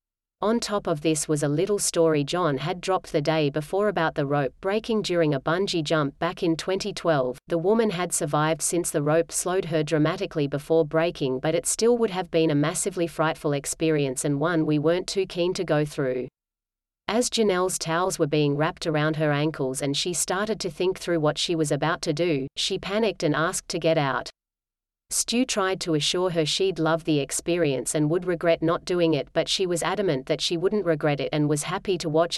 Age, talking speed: 30-49, 210 wpm